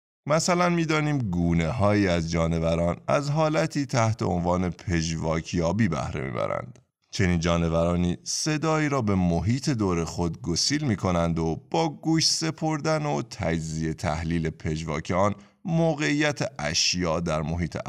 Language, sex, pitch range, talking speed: Persian, male, 85-130 Hz, 115 wpm